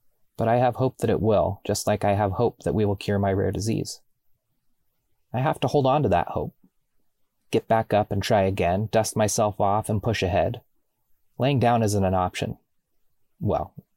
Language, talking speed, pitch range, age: English, 195 wpm, 95-120 Hz, 30-49